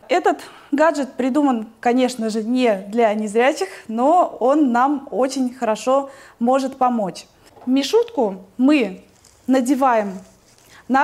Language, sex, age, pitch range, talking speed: Russian, female, 20-39, 225-280 Hz, 105 wpm